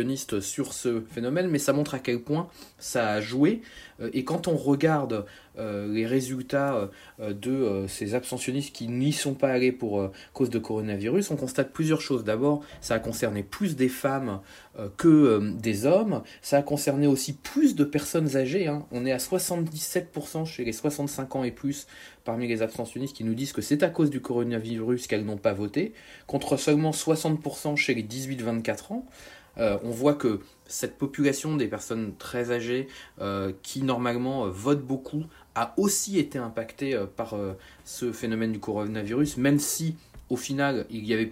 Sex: male